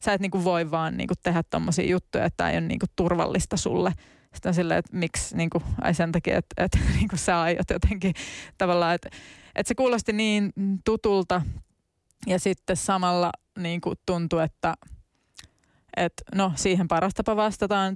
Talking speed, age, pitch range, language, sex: 155 wpm, 20-39, 170-190 Hz, Finnish, female